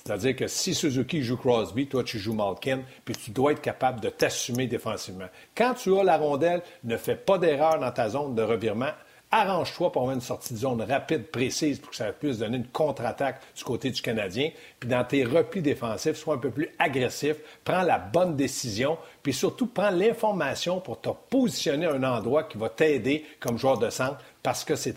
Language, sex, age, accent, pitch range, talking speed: French, male, 60-79, Canadian, 130-175 Hz, 205 wpm